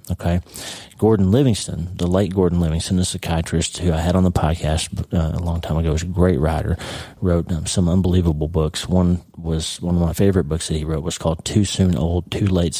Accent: American